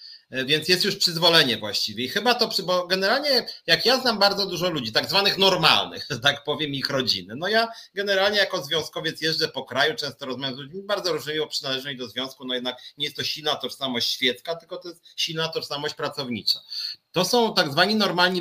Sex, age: male, 40-59